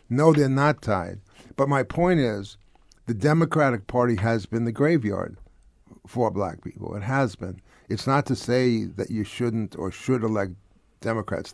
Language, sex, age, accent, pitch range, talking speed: English, male, 50-69, American, 105-130 Hz, 165 wpm